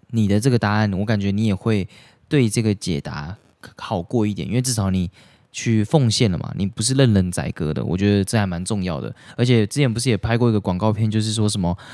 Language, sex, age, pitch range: Chinese, male, 20-39, 100-125 Hz